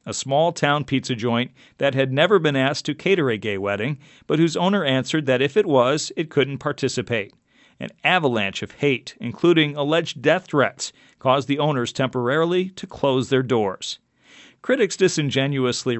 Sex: male